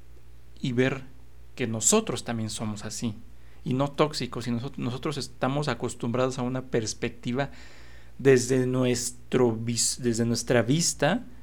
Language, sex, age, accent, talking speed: Spanish, male, 40-59, Mexican, 115 wpm